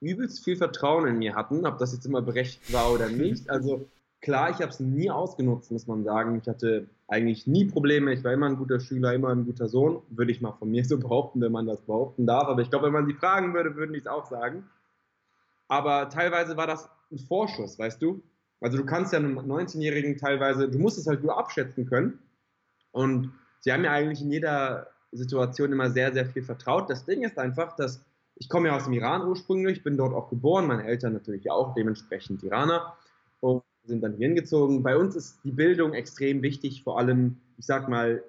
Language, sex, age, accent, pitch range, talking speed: German, male, 20-39, German, 120-155 Hz, 220 wpm